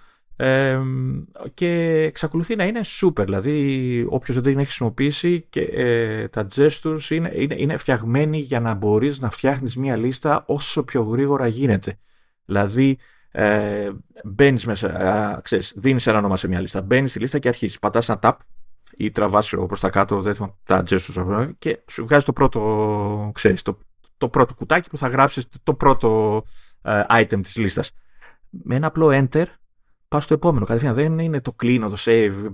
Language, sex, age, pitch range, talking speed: Greek, male, 30-49, 110-150 Hz, 160 wpm